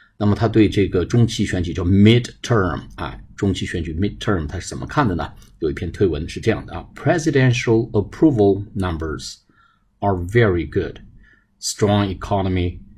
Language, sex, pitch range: Chinese, male, 95-115 Hz